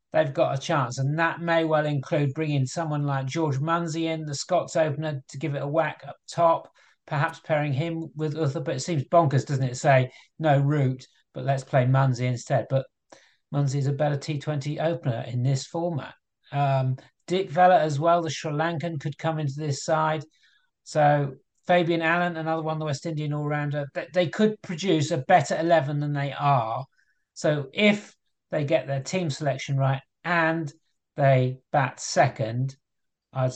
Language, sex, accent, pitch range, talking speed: English, male, British, 135-160 Hz, 175 wpm